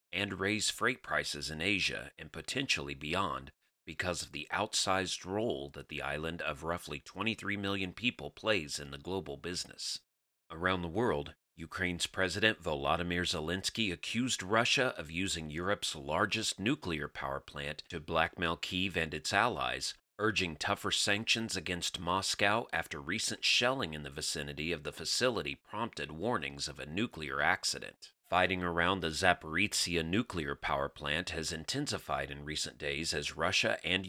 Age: 40-59